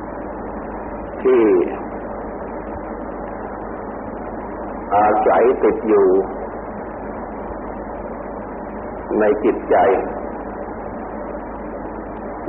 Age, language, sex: 50-69, Thai, male